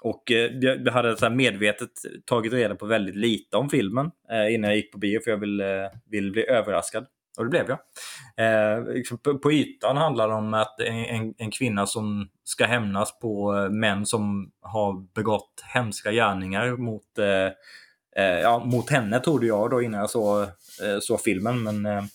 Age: 20-39